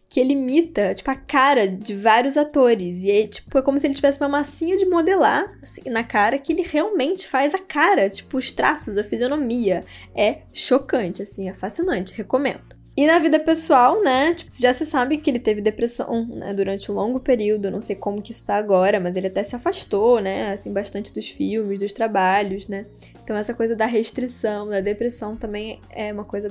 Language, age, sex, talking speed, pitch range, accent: Portuguese, 10-29, female, 205 wpm, 205-280 Hz, Brazilian